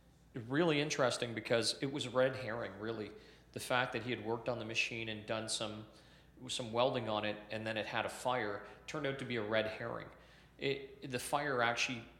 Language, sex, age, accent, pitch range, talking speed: English, male, 40-59, American, 110-130 Hz, 205 wpm